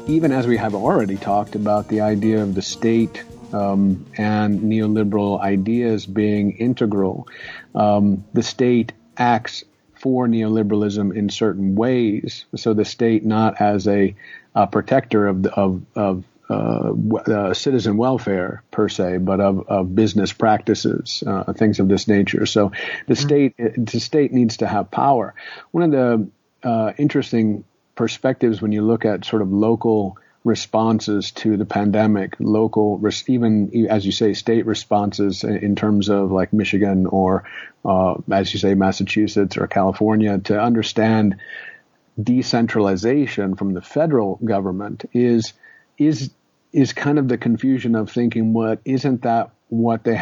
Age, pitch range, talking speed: 50-69, 100-115 Hz, 145 wpm